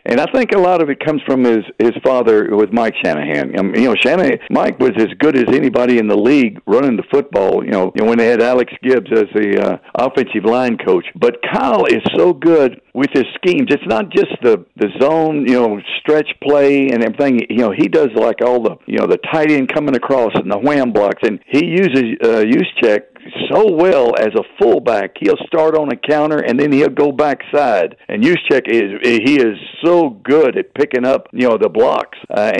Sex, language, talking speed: male, English, 220 wpm